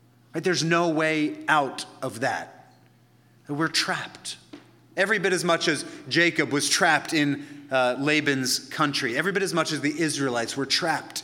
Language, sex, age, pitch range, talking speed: English, male, 30-49, 125-155 Hz, 155 wpm